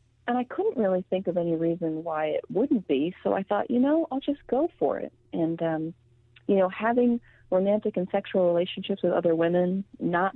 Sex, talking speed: female, 205 wpm